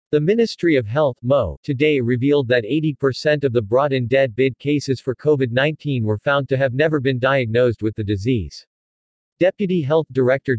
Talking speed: 165 wpm